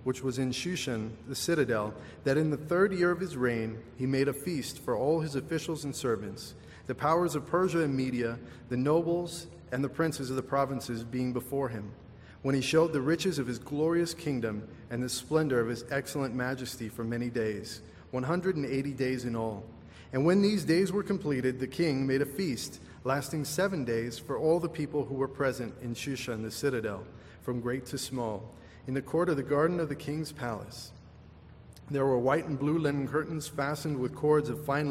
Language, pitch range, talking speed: English, 120-150 Hz, 200 wpm